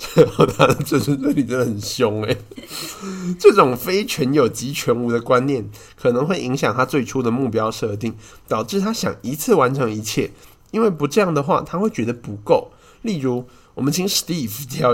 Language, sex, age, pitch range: Chinese, male, 20-39, 115-160 Hz